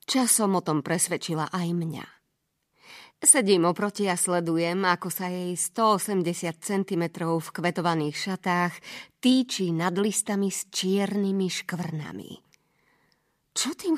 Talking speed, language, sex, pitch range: 110 wpm, Slovak, female, 165-205 Hz